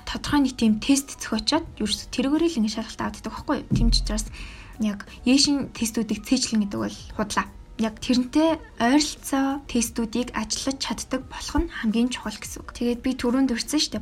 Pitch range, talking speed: 215-255 Hz, 150 wpm